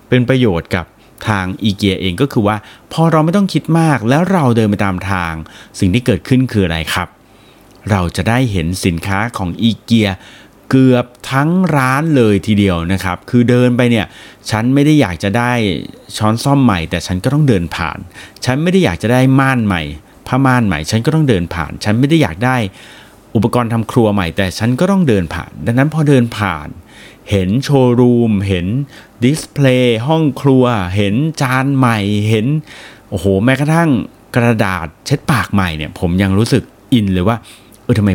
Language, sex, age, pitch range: Thai, male, 30-49, 95-130 Hz